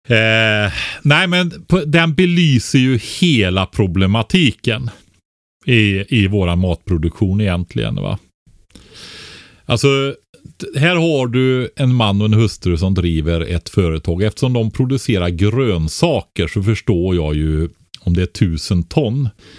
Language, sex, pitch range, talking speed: Swedish, male, 85-115 Hz, 120 wpm